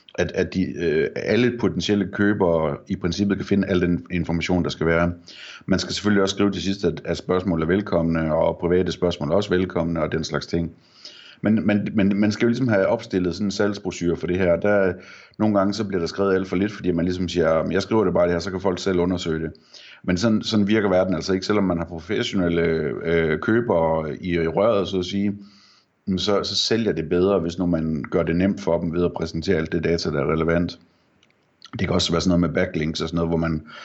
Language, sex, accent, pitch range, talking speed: Danish, male, native, 85-100 Hz, 240 wpm